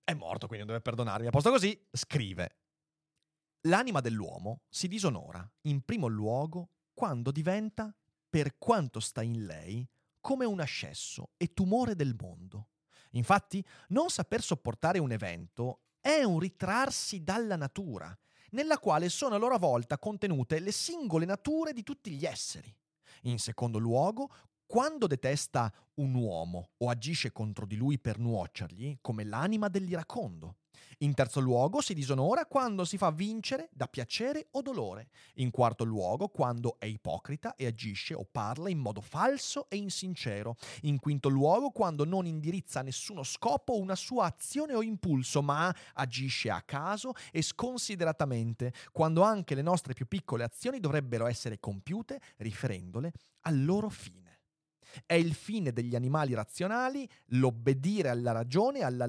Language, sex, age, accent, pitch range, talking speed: Italian, male, 30-49, native, 120-190 Hz, 145 wpm